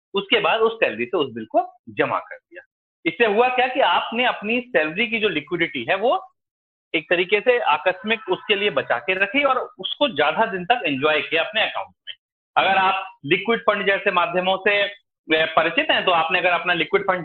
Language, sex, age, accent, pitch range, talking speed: Hindi, male, 40-59, native, 155-245 Hz, 200 wpm